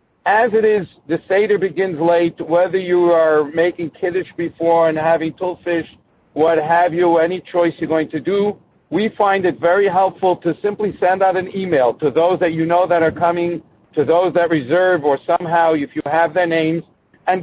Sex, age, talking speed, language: male, 50-69, 195 wpm, English